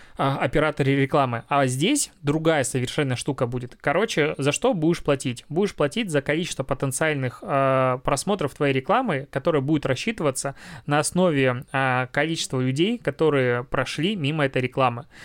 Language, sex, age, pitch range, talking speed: Russian, male, 20-39, 135-155 Hz, 140 wpm